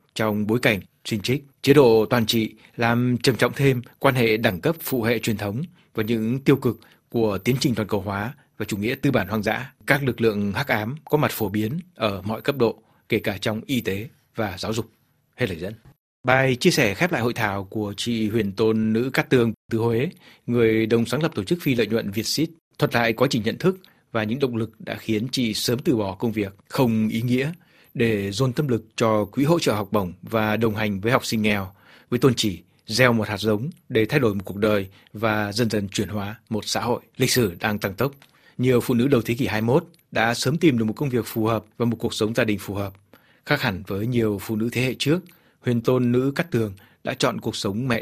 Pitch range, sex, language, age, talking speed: 110-130 Hz, male, Vietnamese, 60-79, 245 wpm